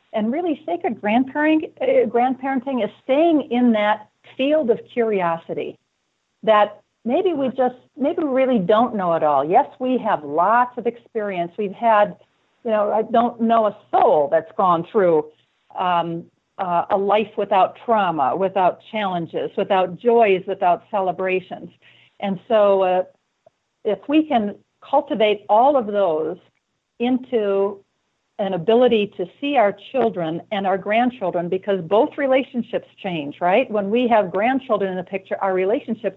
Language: English